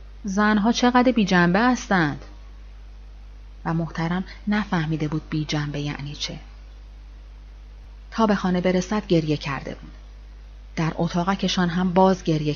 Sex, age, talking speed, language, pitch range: female, 30-49, 130 wpm, Persian, 160-215 Hz